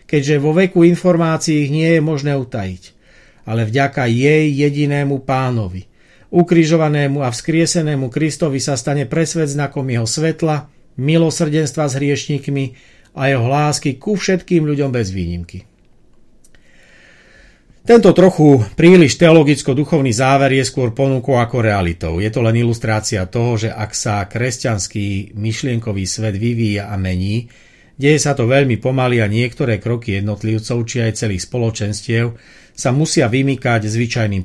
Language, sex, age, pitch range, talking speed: Slovak, male, 50-69, 110-145 Hz, 130 wpm